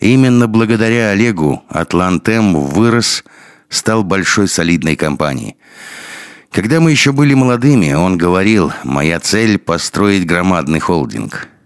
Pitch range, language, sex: 85-115 Hz, Russian, male